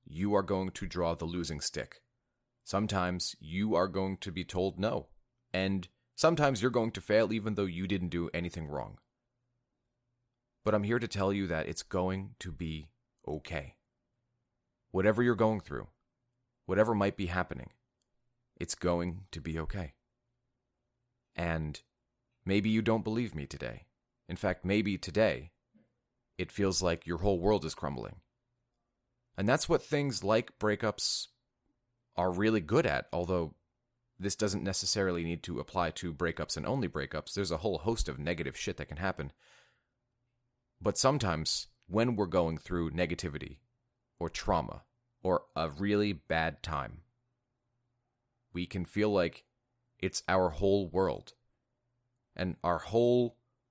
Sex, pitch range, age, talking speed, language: male, 90-120 Hz, 30-49, 145 wpm, English